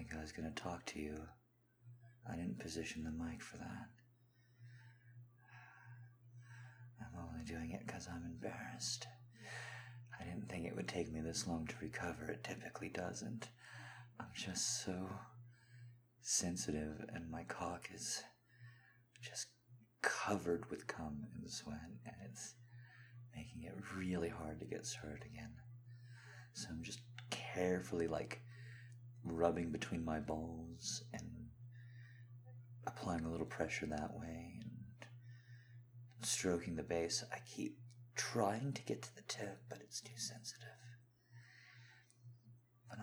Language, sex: English, male